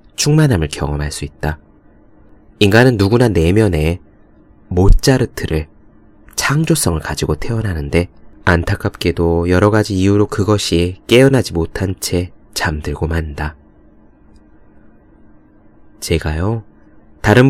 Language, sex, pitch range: Korean, male, 80-110 Hz